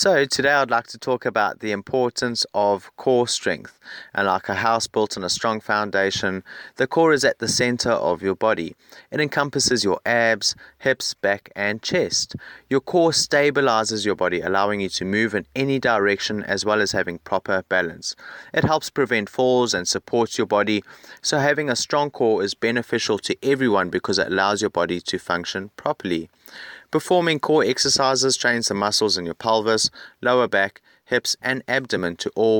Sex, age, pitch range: male, 30-49, 100-125 Hz